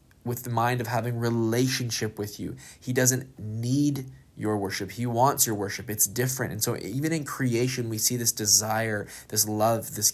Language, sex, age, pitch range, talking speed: English, male, 20-39, 110-135 Hz, 185 wpm